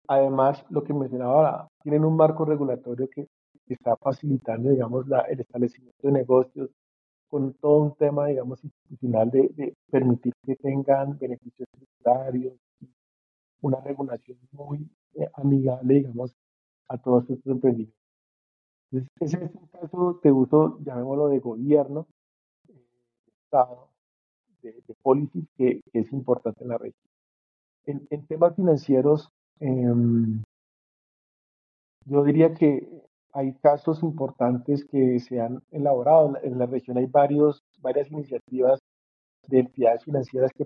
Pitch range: 125-145 Hz